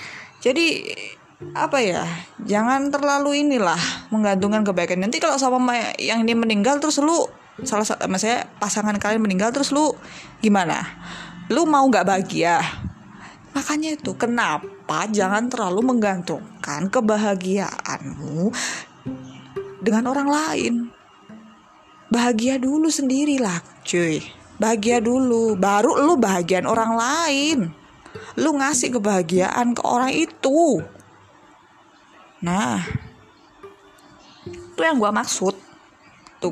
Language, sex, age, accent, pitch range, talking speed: Indonesian, female, 20-39, native, 195-270 Hz, 100 wpm